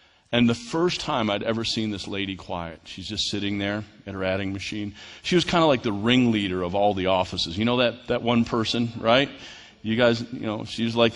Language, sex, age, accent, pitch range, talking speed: English, male, 40-59, American, 105-175 Hz, 225 wpm